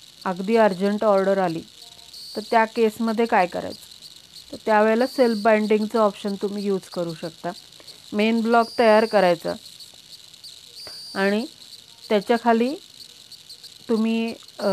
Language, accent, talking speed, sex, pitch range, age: Marathi, native, 80 wpm, female, 205-240 Hz, 30-49